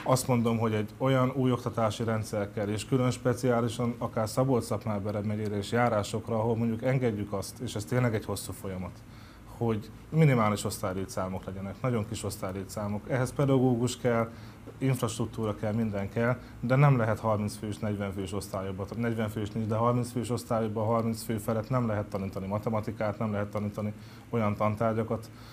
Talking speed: 165 wpm